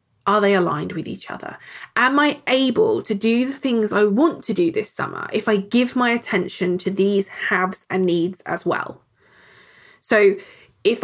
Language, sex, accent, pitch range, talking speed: English, female, British, 190-255 Hz, 180 wpm